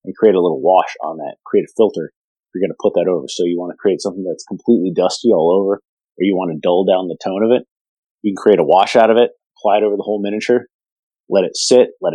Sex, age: male, 30-49